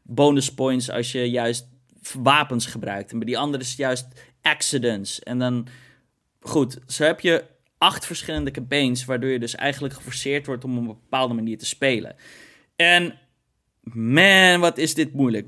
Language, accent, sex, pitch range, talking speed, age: Dutch, Dutch, male, 125-155 Hz, 165 wpm, 20-39